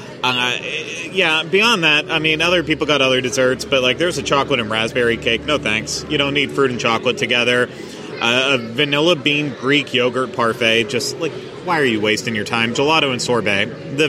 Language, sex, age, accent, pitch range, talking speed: English, male, 30-49, American, 120-155 Hz, 200 wpm